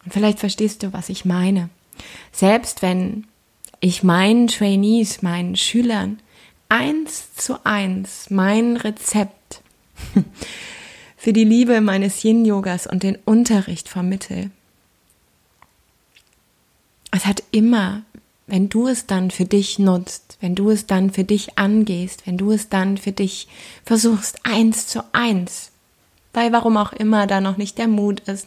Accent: German